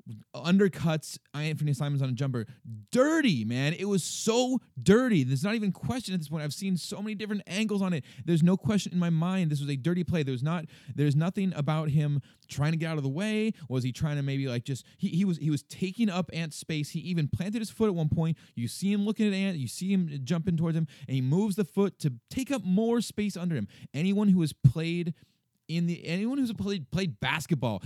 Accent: American